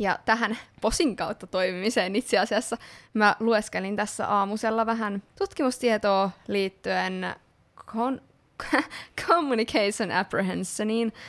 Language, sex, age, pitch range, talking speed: Finnish, female, 20-39, 195-230 Hz, 90 wpm